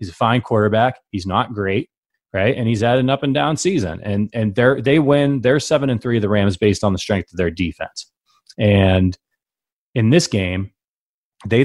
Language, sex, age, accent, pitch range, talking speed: English, male, 30-49, American, 100-125 Hz, 180 wpm